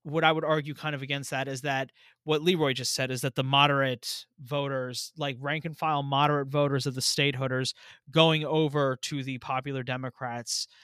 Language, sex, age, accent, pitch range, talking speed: English, male, 30-49, American, 130-160 Hz, 190 wpm